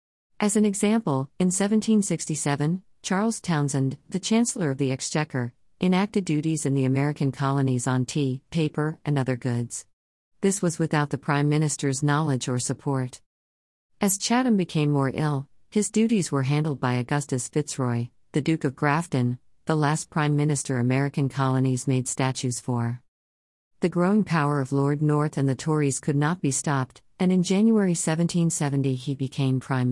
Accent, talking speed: American, 155 wpm